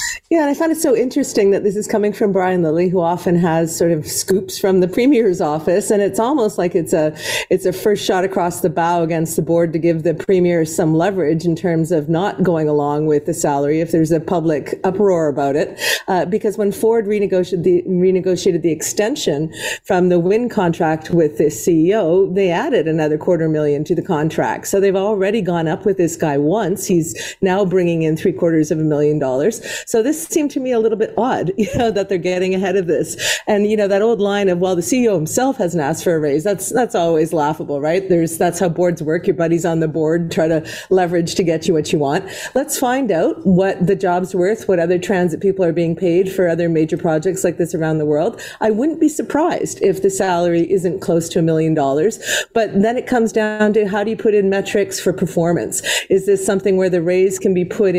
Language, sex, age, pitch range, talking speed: English, female, 40-59, 165-205 Hz, 230 wpm